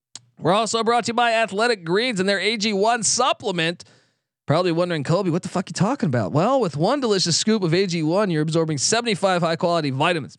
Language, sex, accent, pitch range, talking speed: English, male, American, 140-210 Hz, 215 wpm